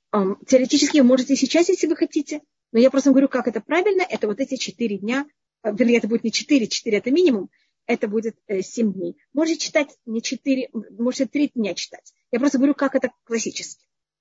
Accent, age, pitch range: native, 30-49, 240-295 Hz